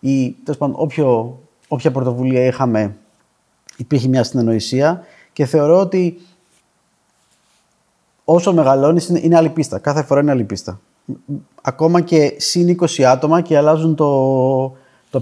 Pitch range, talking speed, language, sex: 125-160 Hz, 110 wpm, Greek, male